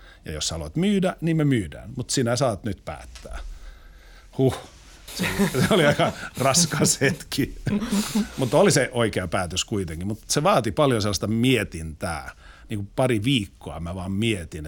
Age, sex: 50-69, male